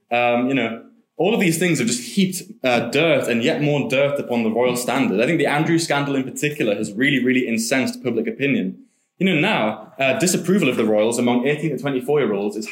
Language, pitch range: English, 115-165 Hz